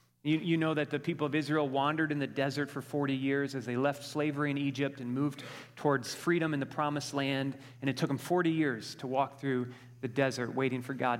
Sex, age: male, 30-49